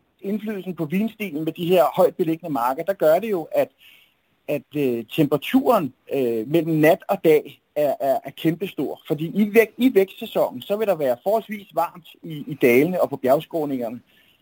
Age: 30-49